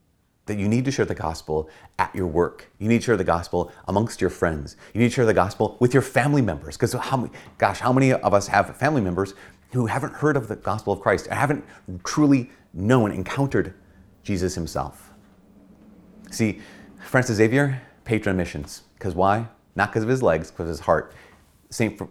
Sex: male